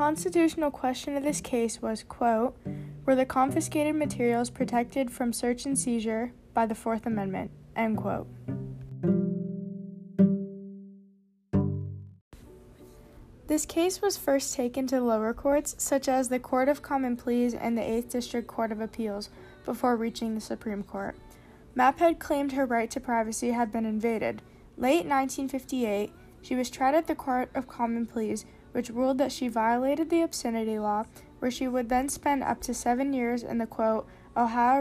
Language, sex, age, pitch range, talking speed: English, female, 10-29, 225-270 Hz, 155 wpm